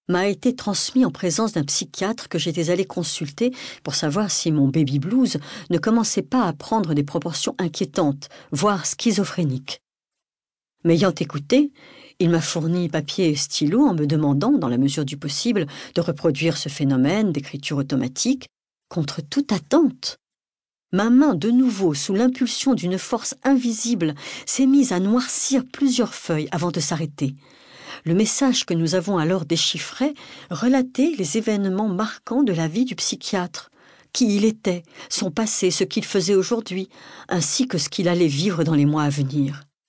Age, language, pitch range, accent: 60-79, French, 155-225 Hz, French